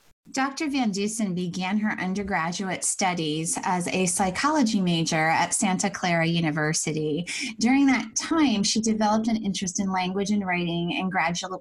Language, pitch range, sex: English, 165-205 Hz, female